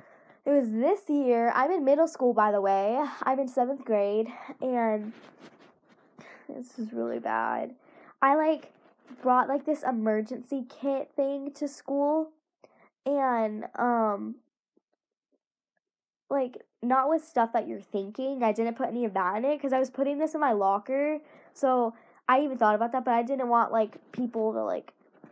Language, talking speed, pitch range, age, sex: English, 165 wpm, 215-275 Hz, 10-29, female